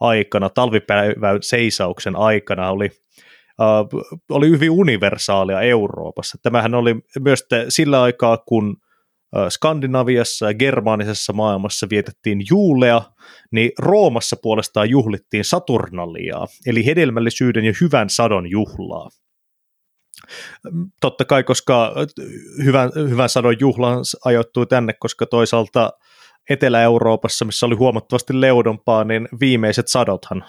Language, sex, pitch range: Finnish, male, 105-140 Hz